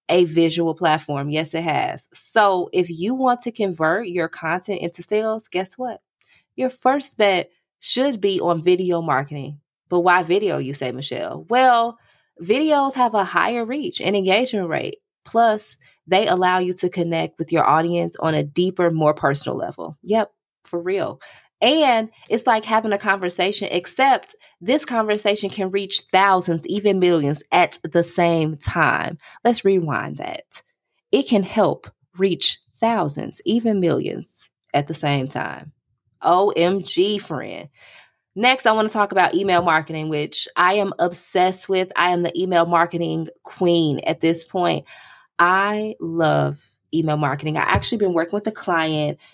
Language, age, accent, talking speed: English, 20-39, American, 155 wpm